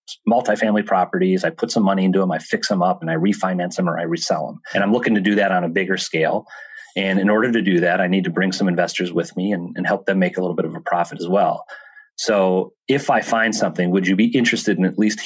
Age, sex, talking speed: 30-49, male, 270 wpm